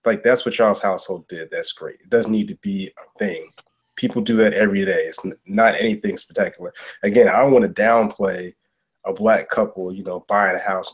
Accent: American